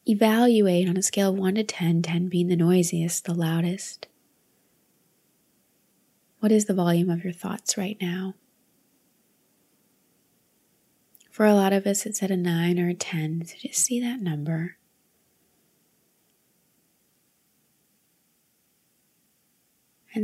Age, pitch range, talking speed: 20-39, 175-215 Hz, 120 wpm